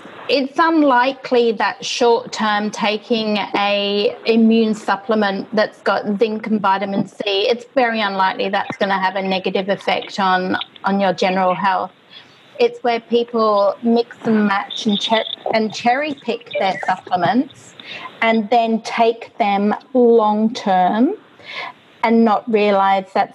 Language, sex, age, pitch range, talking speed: English, female, 30-49, 195-240 Hz, 135 wpm